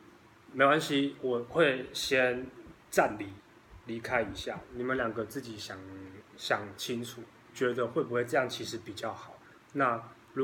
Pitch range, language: 110-140 Hz, Chinese